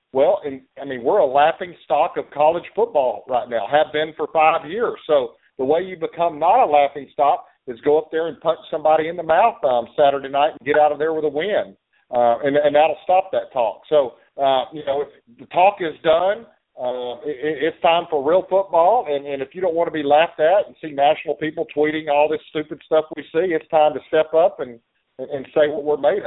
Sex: male